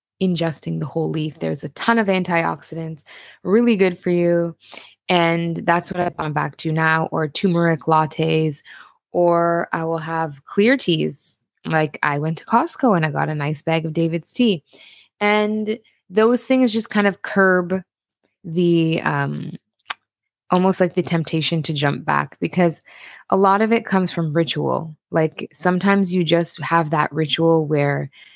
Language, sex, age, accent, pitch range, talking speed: English, female, 20-39, American, 160-185 Hz, 160 wpm